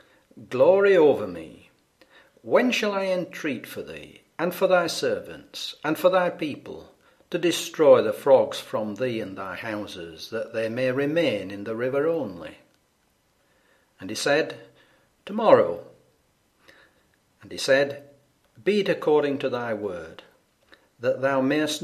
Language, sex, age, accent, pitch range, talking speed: English, male, 60-79, British, 130-195 Hz, 135 wpm